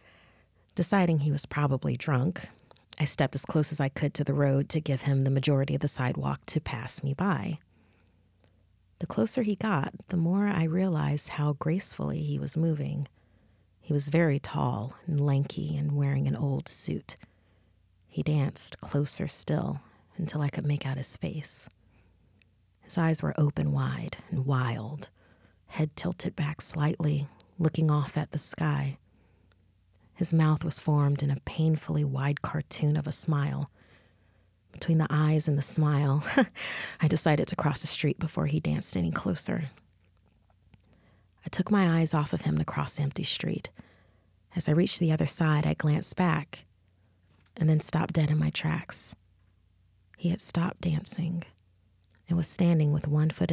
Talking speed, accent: 160 wpm, American